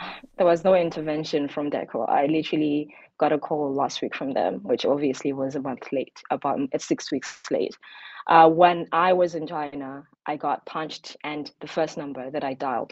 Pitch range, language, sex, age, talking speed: 145-165 Hz, English, female, 20-39, 190 wpm